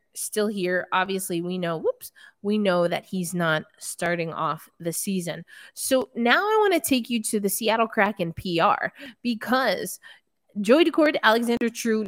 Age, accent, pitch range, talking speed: 20-39, American, 175-225 Hz, 160 wpm